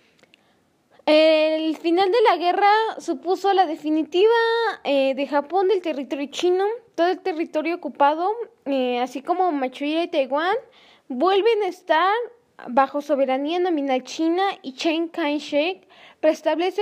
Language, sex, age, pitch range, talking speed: Spanish, female, 10-29, 275-360 Hz, 125 wpm